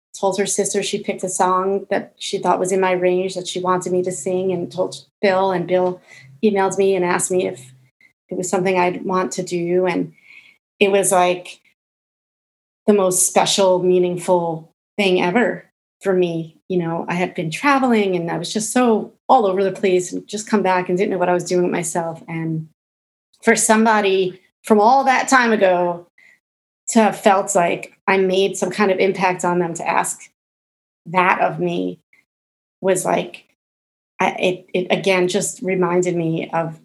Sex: female